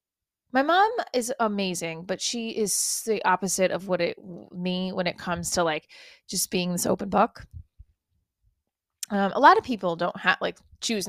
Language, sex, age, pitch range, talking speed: English, female, 20-39, 175-215 Hz, 175 wpm